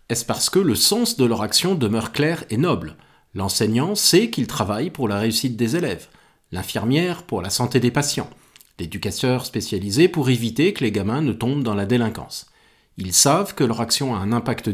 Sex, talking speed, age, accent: male, 190 wpm, 40-59, French